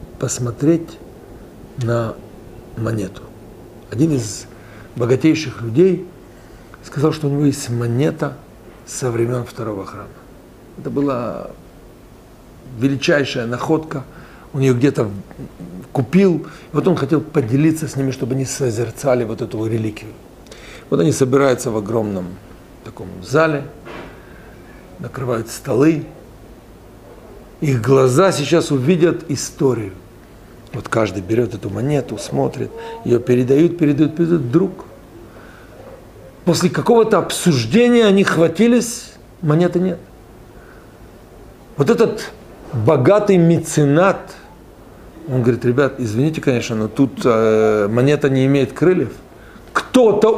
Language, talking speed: Russian, 105 wpm